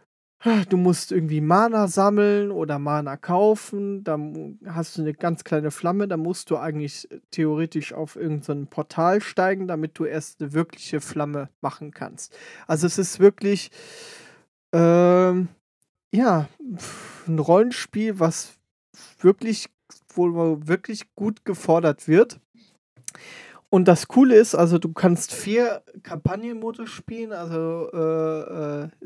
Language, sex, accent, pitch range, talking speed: German, male, German, 155-195 Hz, 125 wpm